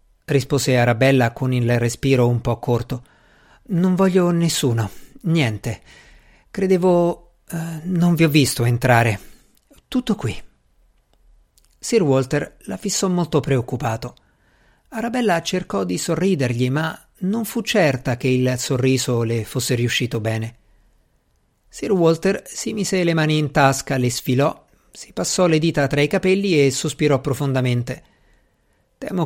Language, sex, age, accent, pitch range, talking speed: Italian, male, 50-69, native, 125-185 Hz, 130 wpm